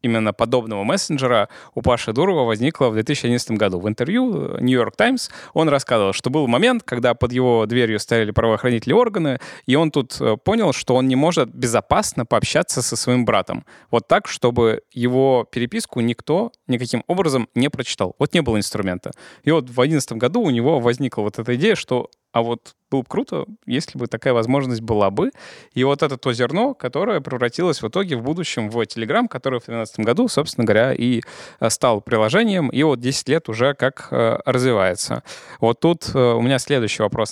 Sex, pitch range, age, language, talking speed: male, 115-135 Hz, 20-39, Russian, 180 wpm